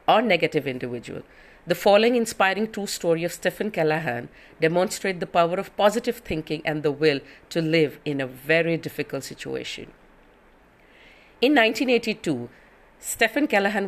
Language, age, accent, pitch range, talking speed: English, 50-69, Indian, 160-205 Hz, 135 wpm